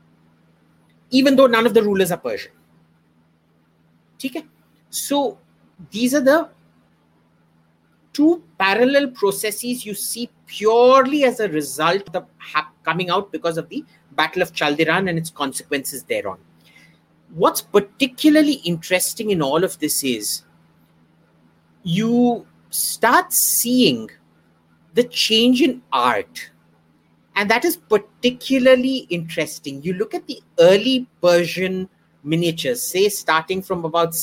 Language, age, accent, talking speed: English, 50-69, Indian, 115 wpm